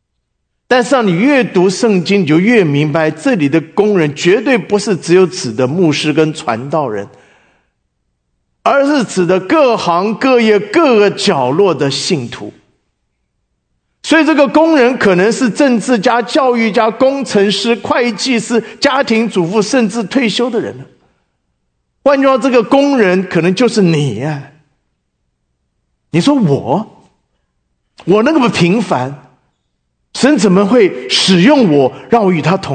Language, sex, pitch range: English, male, 150-245 Hz